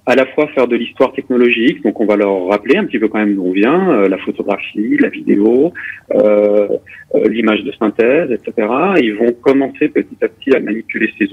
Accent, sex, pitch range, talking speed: French, male, 105-150 Hz, 200 wpm